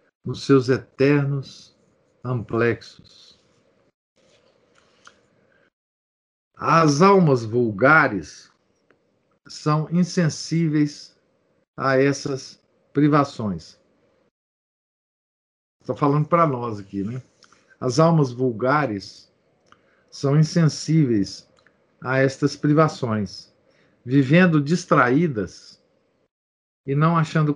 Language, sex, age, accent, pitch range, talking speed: Portuguese, male, 50-69, Brazilian, 125-155 Hz, 65 wpm